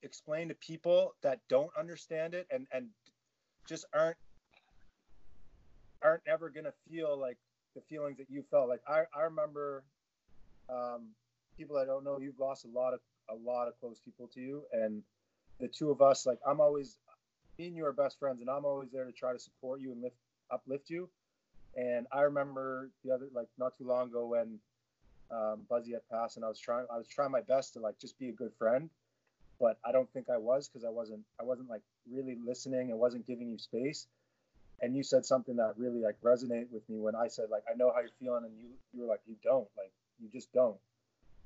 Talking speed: 215 wpm